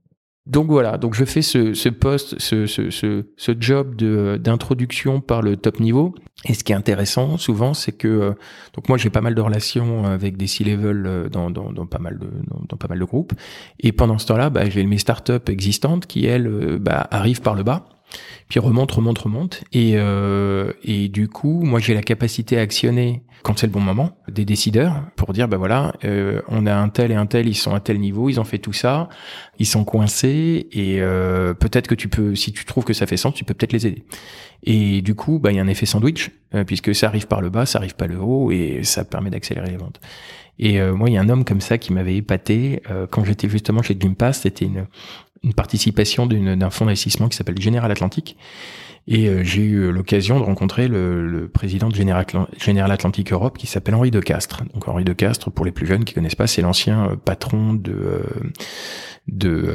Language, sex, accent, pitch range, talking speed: French, male, French, 95-120 Hz, 225 wpm